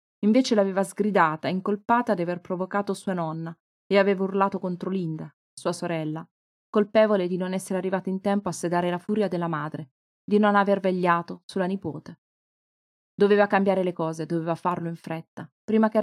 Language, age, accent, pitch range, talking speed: Italian, 30-49, native, 170-205 Hz, 170 wpm